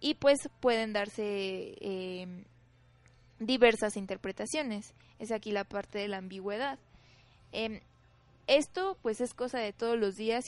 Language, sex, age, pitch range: Spanish, female, 20-39, 210-255 Hz